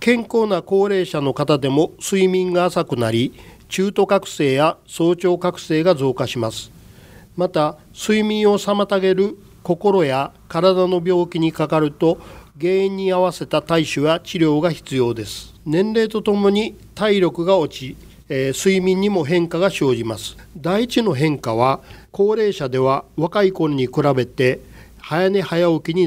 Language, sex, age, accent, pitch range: Japanese, male, 40-59, native, 135-190 Hz